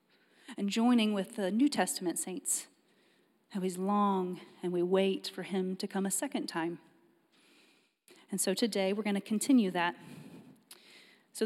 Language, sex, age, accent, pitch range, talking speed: English, female, 30-49, American, 185-235 Hz, 150 wpm